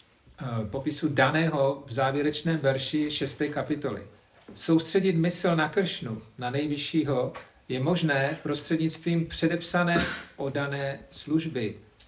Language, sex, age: Czech, male, 40-59